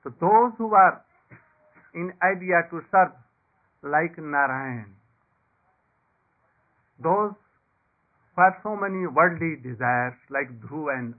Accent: Indian